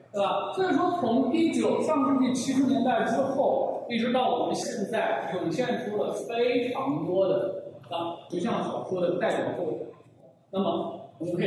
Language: Chinese